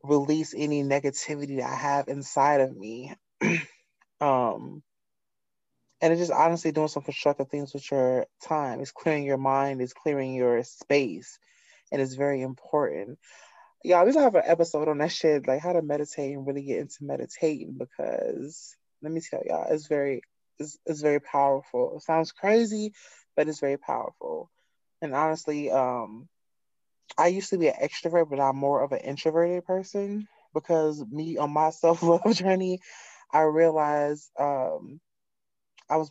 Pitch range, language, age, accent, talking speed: 135-160 Hz, English, 20-39, American, 160 wpm